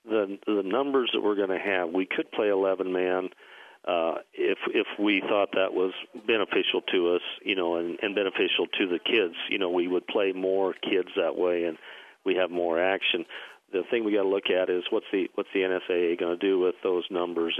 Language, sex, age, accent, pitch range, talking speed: English, male, 50-69, American, 85-125 Hz, 220 wpm